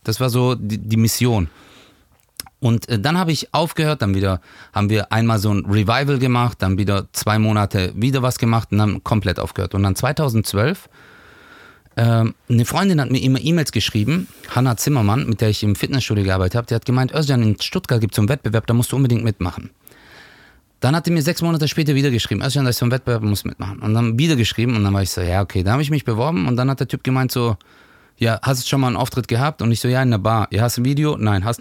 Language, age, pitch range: German, 30-49, 105-135 Hz